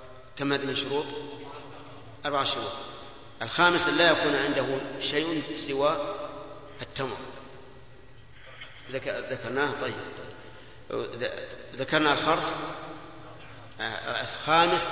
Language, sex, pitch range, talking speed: Arabic, male, 125-150 Hz, 65 wpm